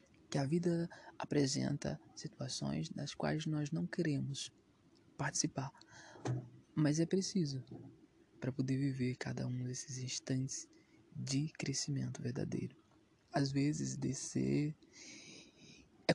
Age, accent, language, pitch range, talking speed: 20-39, Brazilian, Portuguese, 125-165 Hz, 105 wpm